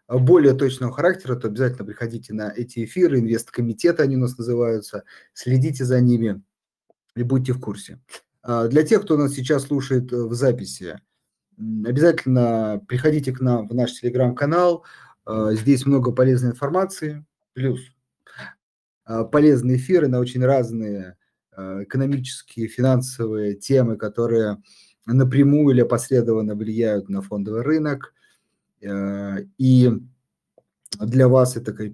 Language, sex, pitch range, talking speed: Russian, male, 110-135 Hz, 115 wpm